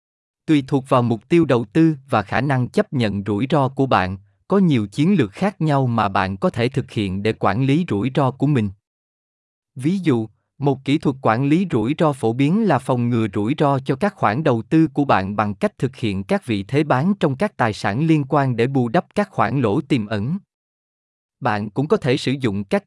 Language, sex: Vietnamese, male